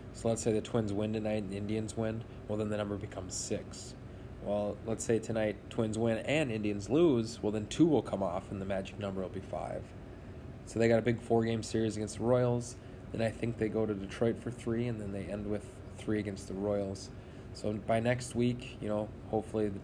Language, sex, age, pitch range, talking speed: English, male, 20-39, 100-115 Hz, 225 wpm